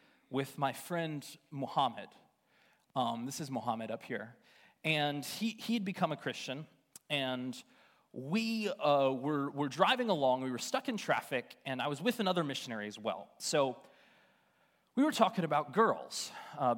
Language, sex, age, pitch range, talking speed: English, male, 30-49, 140-220 Hz, 155 wpm